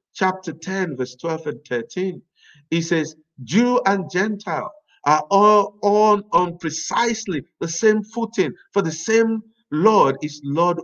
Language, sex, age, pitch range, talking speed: English, male, 50-69, 150-210 Hz, 140 wpm